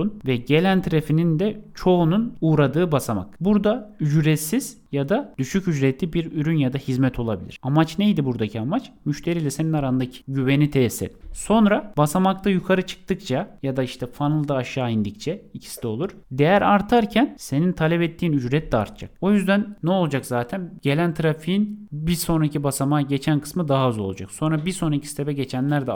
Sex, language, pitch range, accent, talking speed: male, Turkish, 125-170 Hz, native, 165 wpm